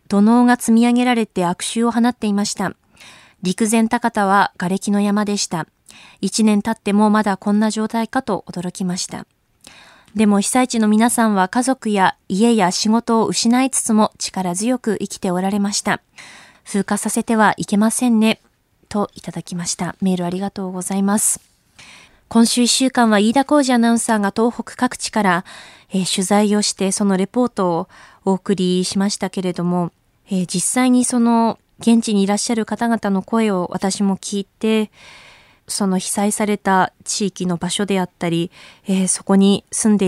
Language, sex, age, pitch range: Japanese, female, 20-39, 185-225 Hz